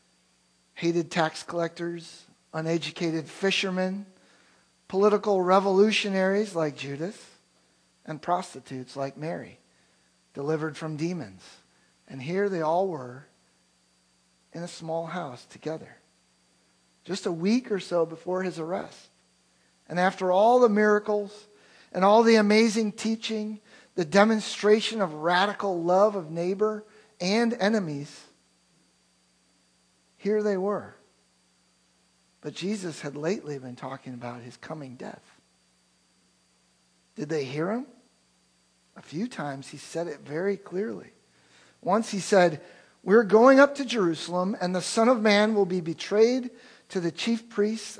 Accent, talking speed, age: American, 125 wpm, 50-69